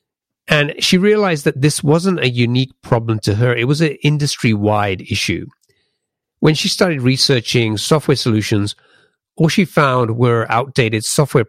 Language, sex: English, male